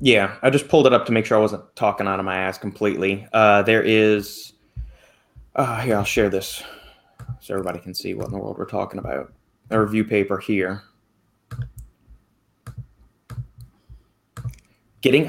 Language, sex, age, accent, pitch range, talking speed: English, male, 20-39, American, 100-120 Hz, 160 wpm